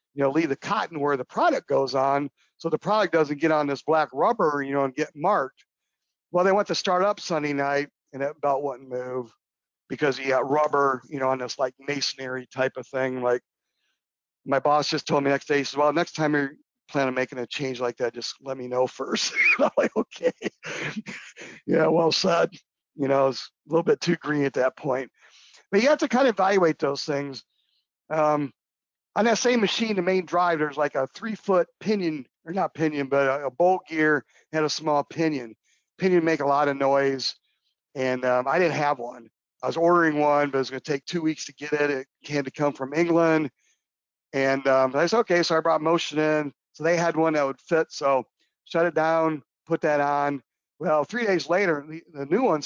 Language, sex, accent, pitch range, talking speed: English, male, American, 135-170 Hz, 220 wpm